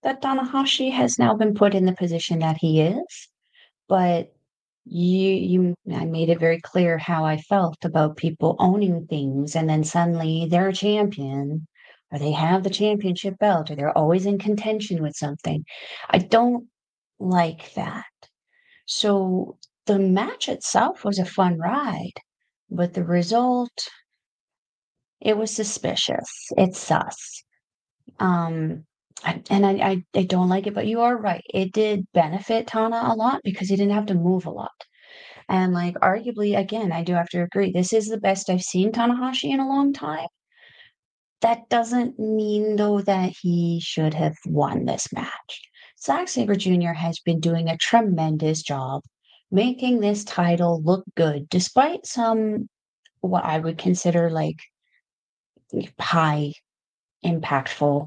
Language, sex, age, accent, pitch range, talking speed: English, female, 40-59, American, 165-215 Hz, 150 wpm